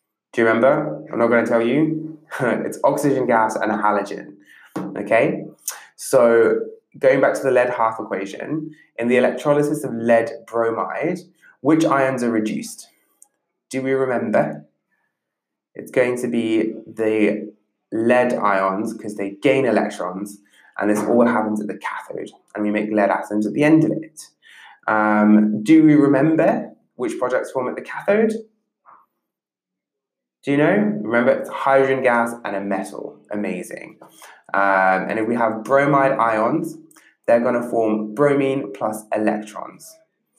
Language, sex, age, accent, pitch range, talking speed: English, male, 20-39, British, 110-150 Hz, 150 wpm